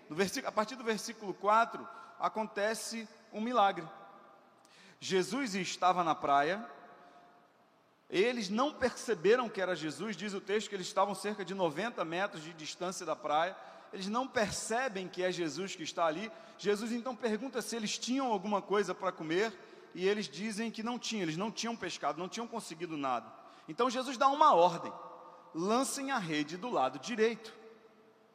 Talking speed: 160 wpm